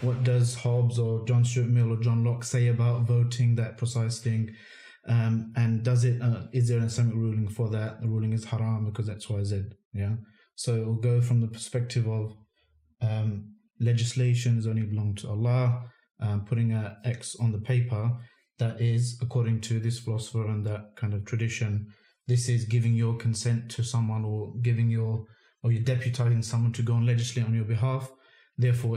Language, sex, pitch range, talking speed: English, male, 110-125 Hz, 195 wpm